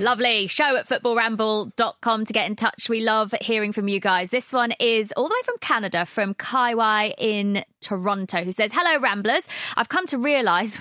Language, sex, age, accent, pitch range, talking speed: English, female, 20-39, British, 185-245 Hz, 190 wpm